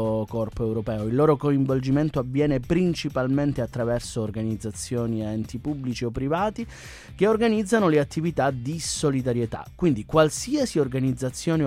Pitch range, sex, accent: 120-160 Hz, male, native